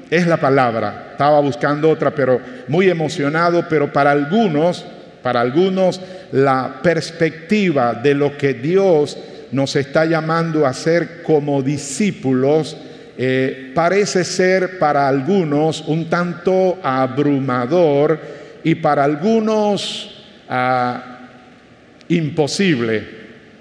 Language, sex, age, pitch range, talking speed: Spanish, male, 50-69, 140-180 Hz, 100 wpm